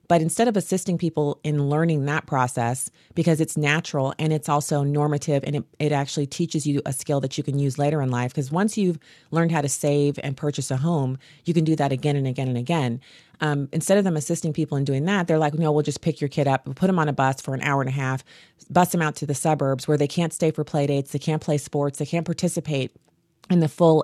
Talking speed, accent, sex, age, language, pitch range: 255 wpm, American, female, 30-49, English, 140-165 Hz